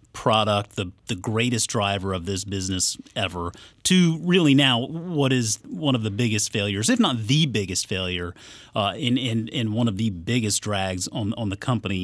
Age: 30-49